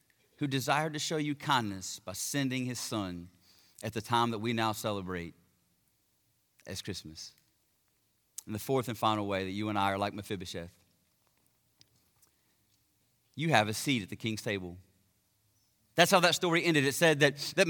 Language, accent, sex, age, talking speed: English, American, male, 30-49, 165 wpm